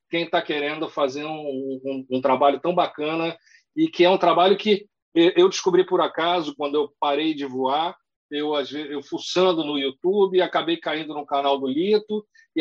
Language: Portuguese